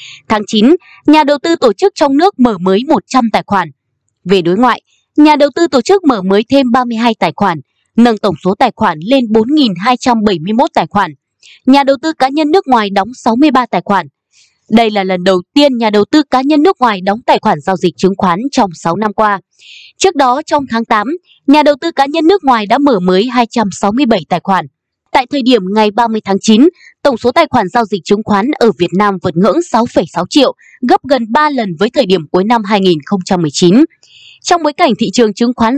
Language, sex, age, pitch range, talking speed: Vietnamese, female, 20-39, 190-275 Hz, 215 wpm